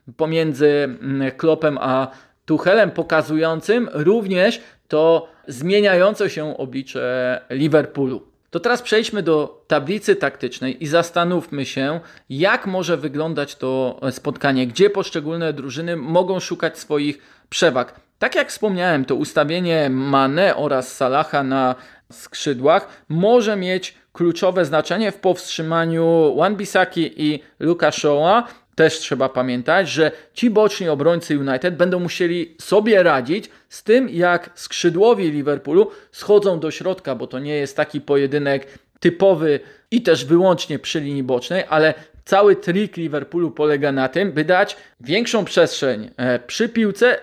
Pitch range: 140-180 Hz